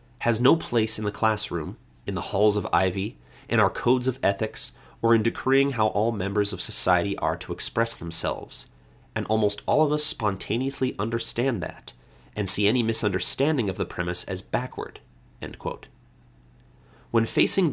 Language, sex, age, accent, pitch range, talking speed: English, male, 30-49, American, 85-115 Hz, 160 wpm